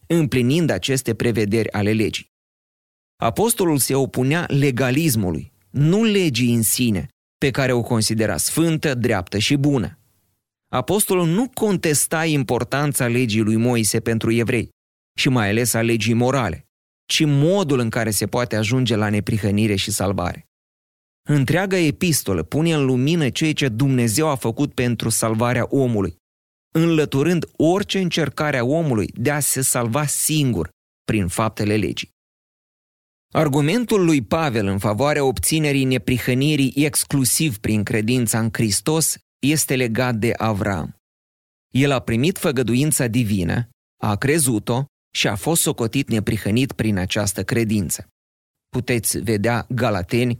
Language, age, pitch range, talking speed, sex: Romanian, 30-49, 110-145 Hz, 125 wpm, male